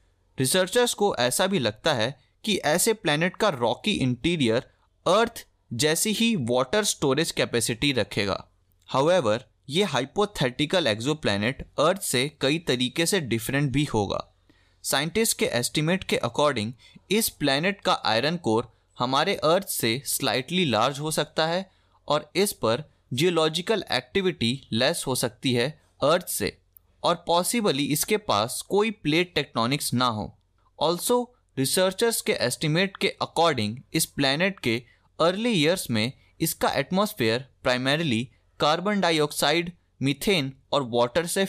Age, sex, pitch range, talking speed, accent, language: 20-39, male, 120-180 Hz, 130 wpm, native, Hindi